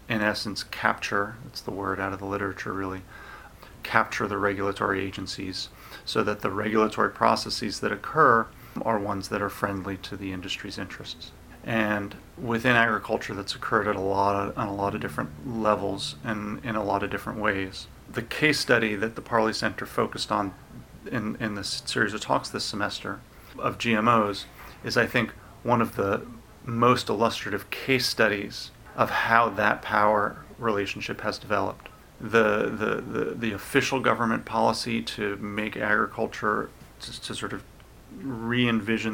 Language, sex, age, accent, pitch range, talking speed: English, male, 40-59, American, 100-115 Hz, 160 wpm